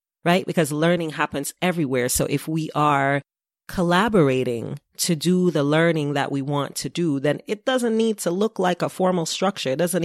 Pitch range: 140-180 Hz